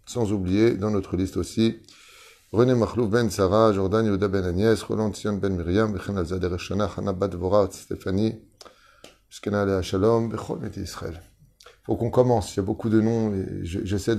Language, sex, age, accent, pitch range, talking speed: French, male, 30-49, French, 100-115 Hz, 170 wpm